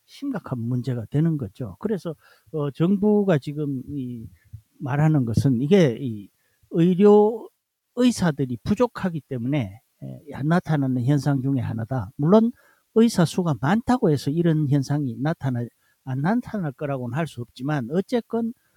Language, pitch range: Korean, 130-185 Hz